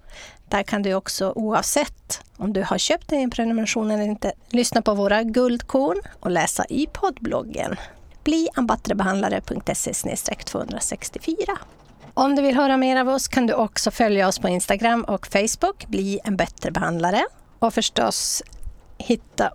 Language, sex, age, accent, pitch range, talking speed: Swedish, female, 30-49, native, 190-235 Hz, 140 wpm